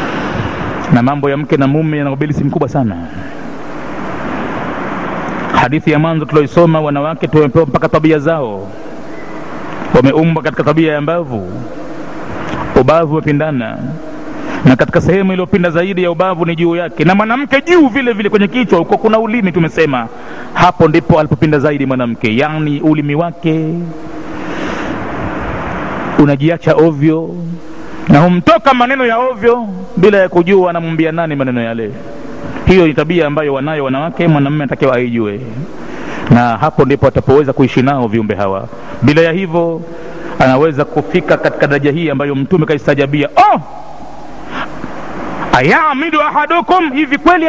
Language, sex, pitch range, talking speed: Swahili, male, 150-225 Hz, 130 wpm